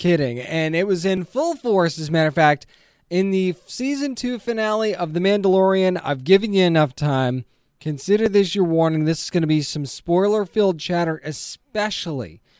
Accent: American